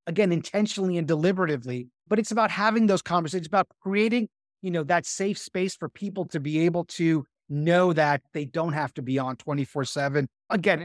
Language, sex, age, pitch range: English, male, 30-49, 160-200 Hz